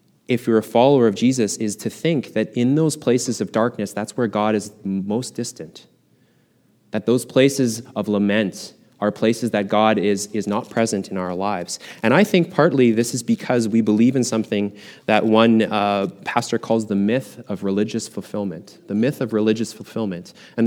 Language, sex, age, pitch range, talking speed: English, male, 20-39, 105-125 Hz, 185 wpm